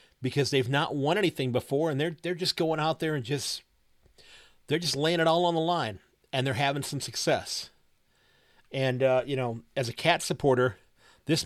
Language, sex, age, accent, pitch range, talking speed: English, male, 40-59, American, 125-145 Hz, 195 wpm